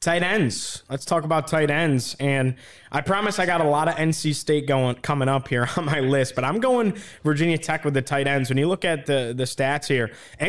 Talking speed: 235 wpm